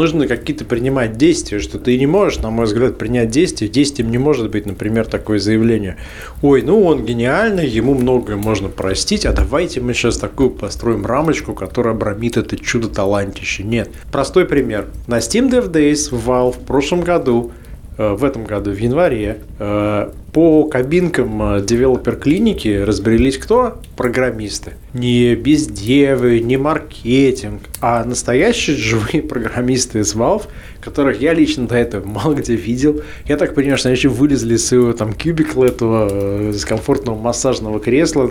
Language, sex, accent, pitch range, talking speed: Russian, male, native, 105-140 Hz, 150 wpm